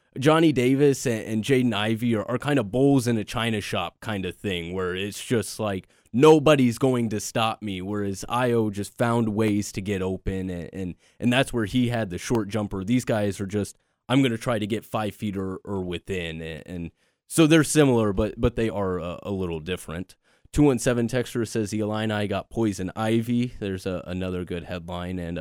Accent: American